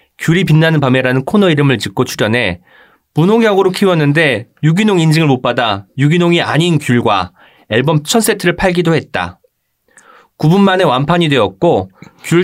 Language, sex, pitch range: Korean, male, 125-180 Hz